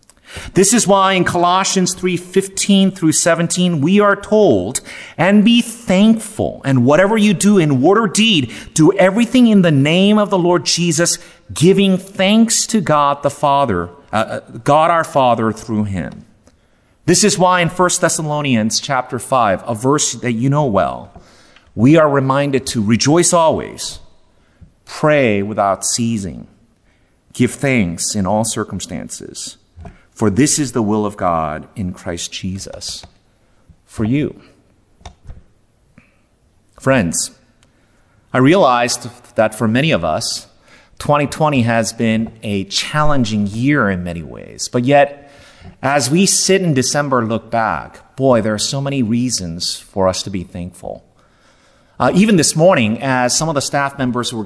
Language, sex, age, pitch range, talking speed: English, male, 40-59, 110-175 Hz, 145 wpm